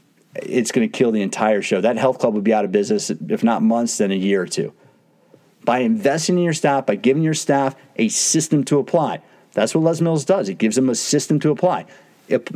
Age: 40-59